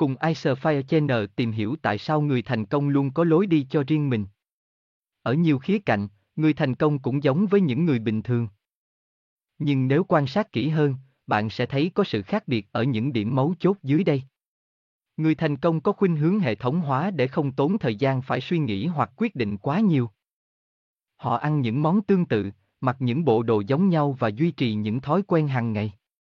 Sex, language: male, Vietnamese